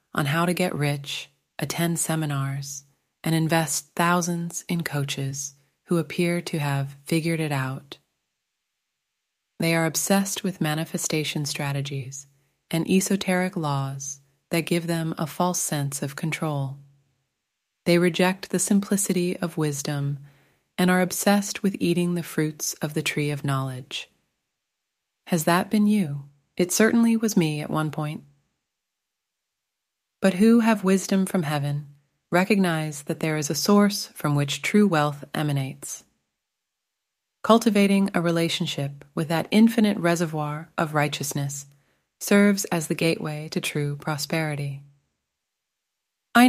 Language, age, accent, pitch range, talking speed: English, 30-49, American, 145-185 Hz, 130 wpm